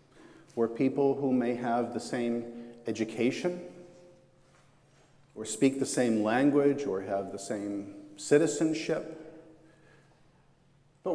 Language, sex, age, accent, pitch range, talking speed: English, male, 50-69, American, 130-170 Hz, 100 wpm